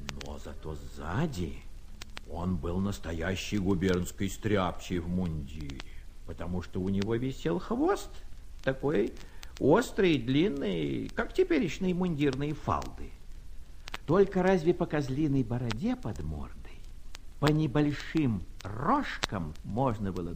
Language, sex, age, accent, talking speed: Russian, male, 60-79, native, 105 wpm